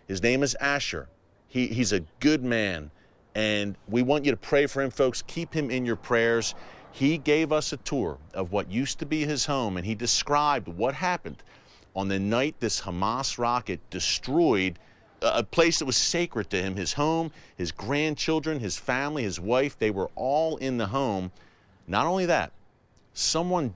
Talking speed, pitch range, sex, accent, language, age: 180 wpm, 105-145 Hz, male, American, English, 40-59